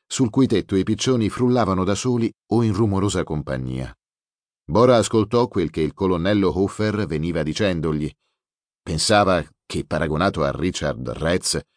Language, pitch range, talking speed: Italian, 80-115 Hz, 140 wpm